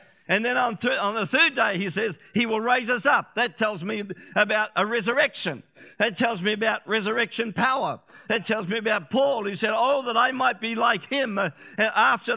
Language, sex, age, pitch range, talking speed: English, male, 50-69, 195-230 Hz, 200 wpm